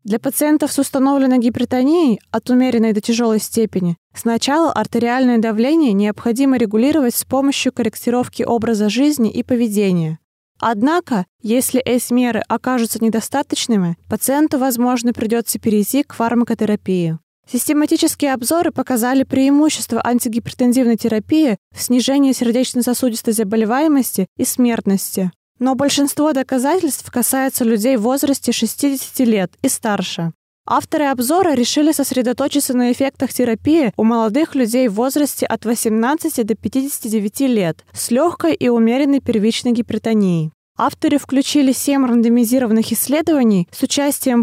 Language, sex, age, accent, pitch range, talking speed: Russian, female, 20-39, native, 225-270 Hz, 120 wpm